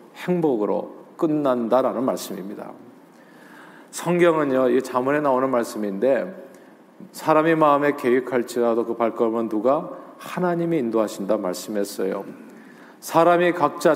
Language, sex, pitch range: Korean, male, 130-190 Hz